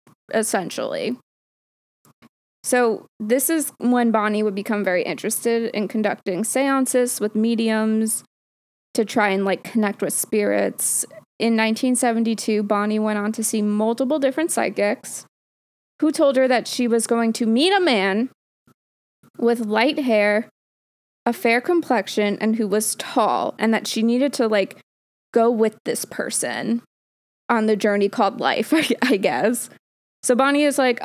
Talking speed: 145 wpm